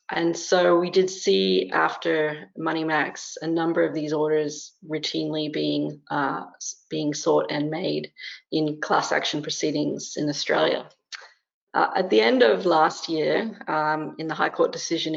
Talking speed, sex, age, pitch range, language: 150 wpm, female, 30-49, 150-180 Hz, English